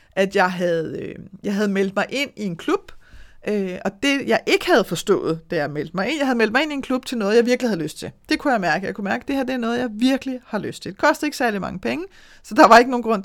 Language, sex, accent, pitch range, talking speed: Danish, female, native, 185-255 Hz, 315 wpm